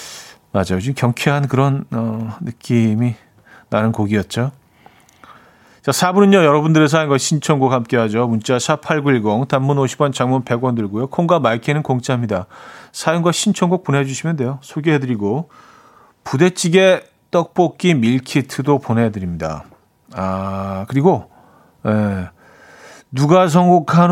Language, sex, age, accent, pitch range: Korean, male, 40-59, native, 110-160 Hz